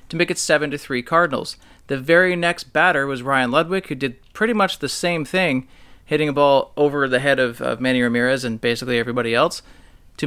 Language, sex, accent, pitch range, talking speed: English, male, American, 120-160 Hz, 210 wpm